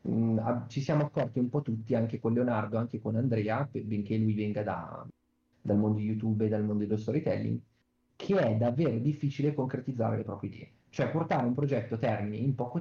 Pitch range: 110-125 Hz